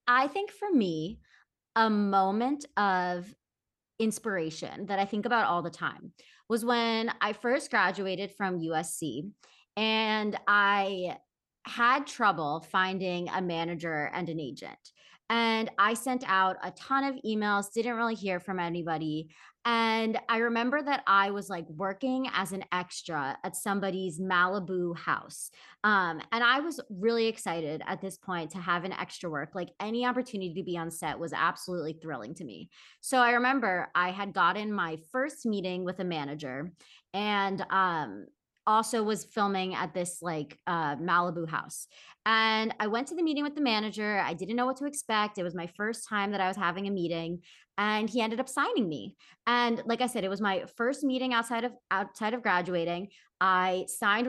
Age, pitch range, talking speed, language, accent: 30-49, 180-230 Hz, 170 wpm, English, American